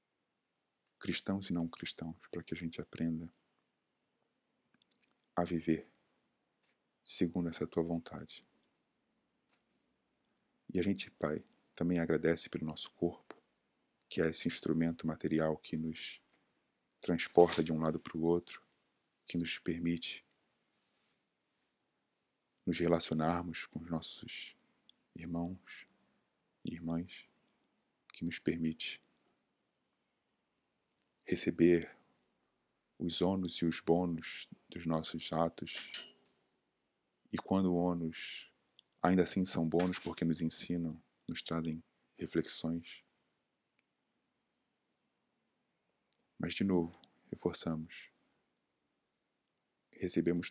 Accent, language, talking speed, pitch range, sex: Brazilian, Portuguese, 95 wpm, 80-85 Hz, male